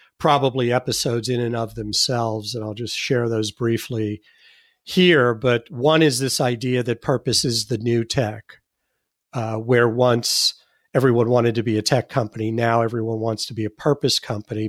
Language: English